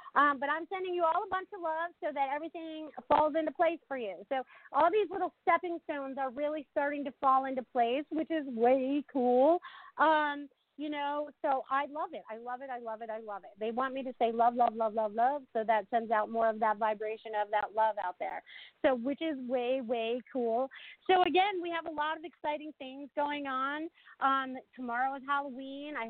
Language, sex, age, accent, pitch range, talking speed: English, female, 40-59, American, 235-295 Hz, 220 wpm